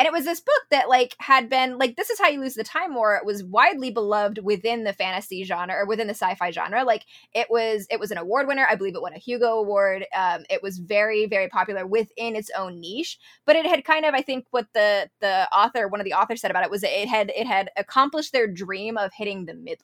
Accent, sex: American, female